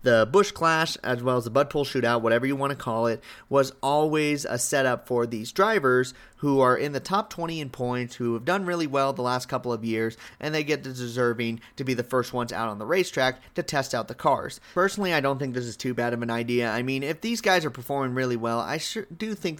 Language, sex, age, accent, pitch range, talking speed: English, male, 30-49, American, 125-175 Hz, 255 wpm